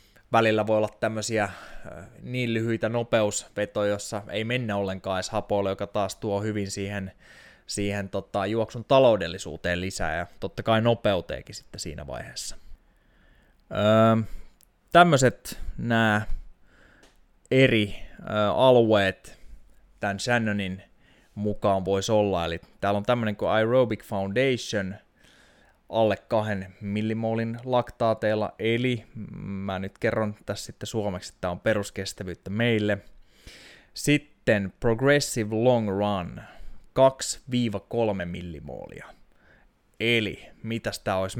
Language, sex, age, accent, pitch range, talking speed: Finnish, male, 20-39, native, 95-115 Hz, 105 wpm